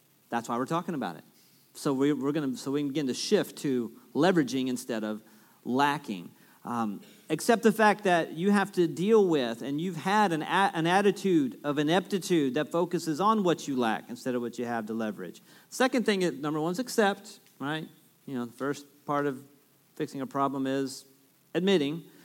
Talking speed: 190 wpm